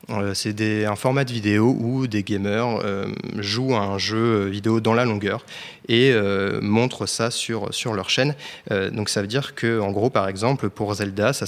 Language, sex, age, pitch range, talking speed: French, male, 20-39, 105-125 Hz, 205 wpm